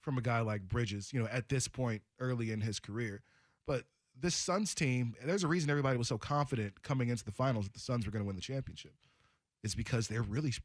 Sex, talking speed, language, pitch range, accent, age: male, 240 wpm, English, 115-155 Hz, American, 20-39